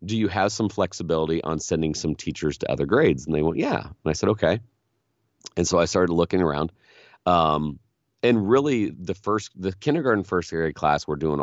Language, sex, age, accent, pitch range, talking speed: English, male, 40-59, American, 80-105 Hz, 200 wpm